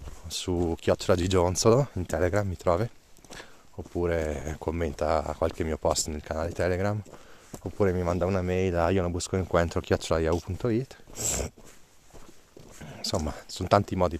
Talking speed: 125 wpm